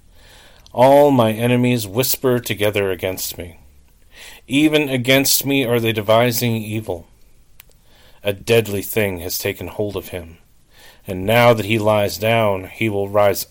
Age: 40-59